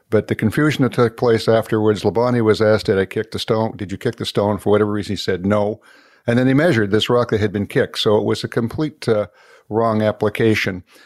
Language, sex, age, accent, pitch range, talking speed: English, male, 60-79, American, 105-120 Hz, 240 wpm